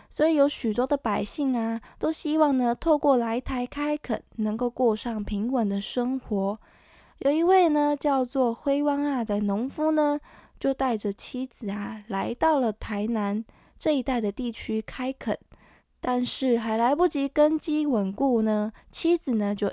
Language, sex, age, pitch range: Chinese, female, 20-39, 215-285 Hz